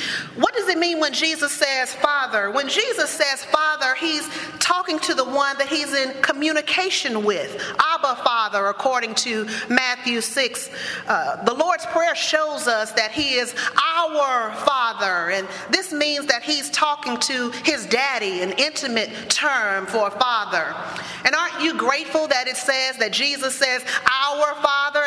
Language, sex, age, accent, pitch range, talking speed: English, female, 40-59, American, 245-305 Hz, 150 wpm